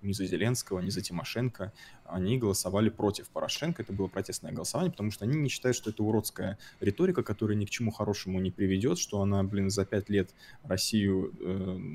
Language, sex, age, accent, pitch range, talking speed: Russian, male, 20-39, native, 95-110 Hz, 190 wpm